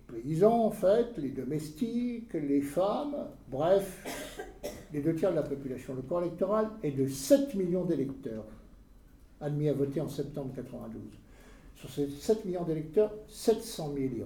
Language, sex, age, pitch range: French, male, 60-79, 140-195 Hz